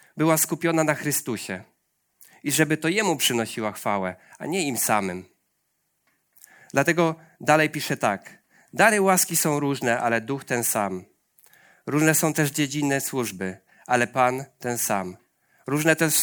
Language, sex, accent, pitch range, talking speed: Polish, male, native, 125-160 Hz, 135 wpm